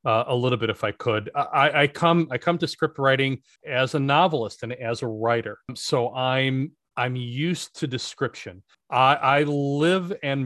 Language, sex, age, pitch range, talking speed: English, male, 30-49, 120-145 Hz, 185 wpm